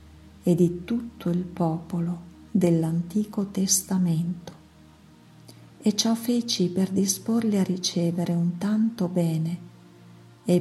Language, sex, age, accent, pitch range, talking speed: Italian, female, 50-69, native, 160-195 Hz, 100 wpm